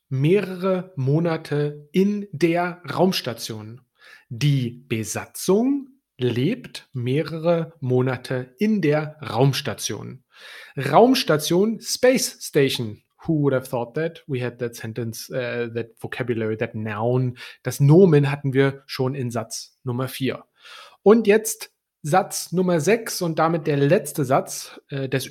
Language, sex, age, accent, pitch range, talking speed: German, male, 30-49, German, 125-175 Hz, 115 wpm